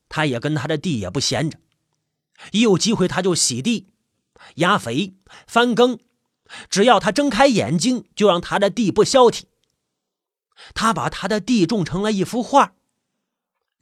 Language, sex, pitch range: Chinese, male, 165-245 Hz